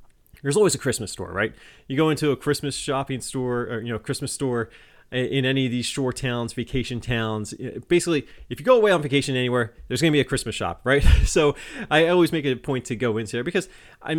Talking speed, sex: 230 wpm, male